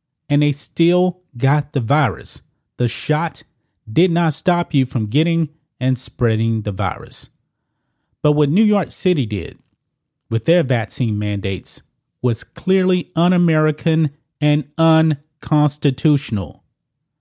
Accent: American